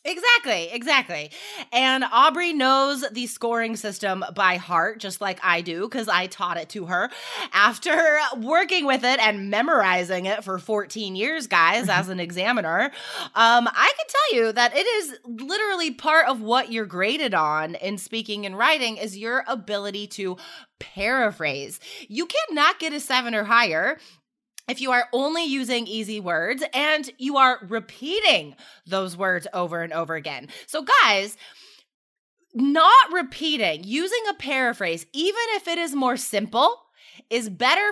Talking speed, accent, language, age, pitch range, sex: 155 wpm, American, English, 20-39, 200-290 Hz, female